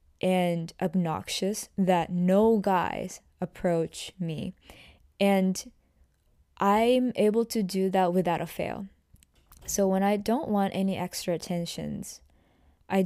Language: English